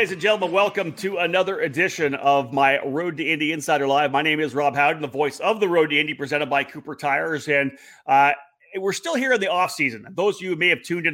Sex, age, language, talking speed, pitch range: male, 30-49, English, 255 wpm, 140-170 Hz